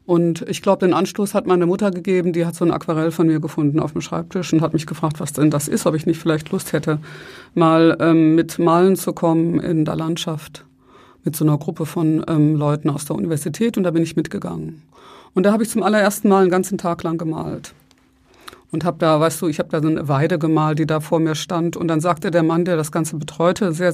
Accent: German